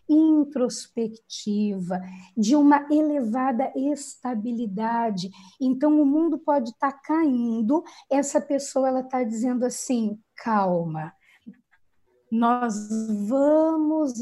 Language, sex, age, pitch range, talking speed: Portuguese, female, 20-39, 210-285 Hz, 90 wpm